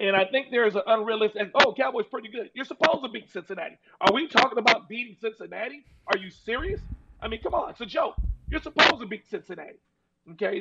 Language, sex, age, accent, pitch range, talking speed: English, male, 40-59, American, 195-255 Hz, 220 wpm